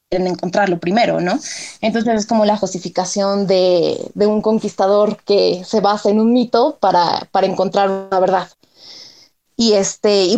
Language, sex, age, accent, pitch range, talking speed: Spanish, female, 20-39, Mexican, 200-240 Hz, 155 wpm